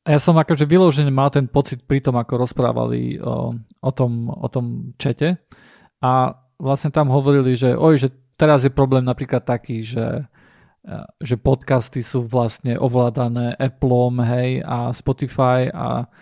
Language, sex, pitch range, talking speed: Slovak, male, 125-140 Hz, 150 wpm